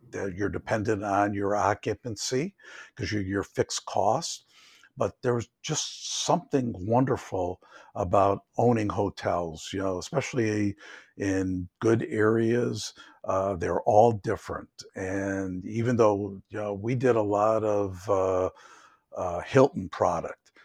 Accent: American